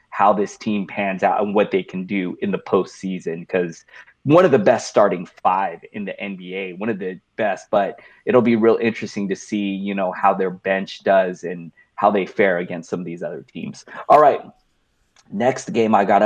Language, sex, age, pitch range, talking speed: English, male, 30-49, 100-135 Hz, 205 wpm